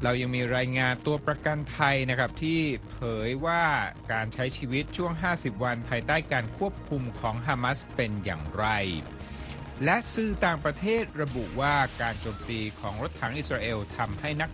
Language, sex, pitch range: Thai, male, 105-140 Hz